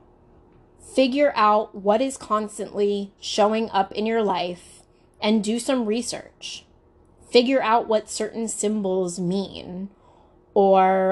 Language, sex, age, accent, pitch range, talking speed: English, female, 20-39, American, 190-220 Hz, 115 wpm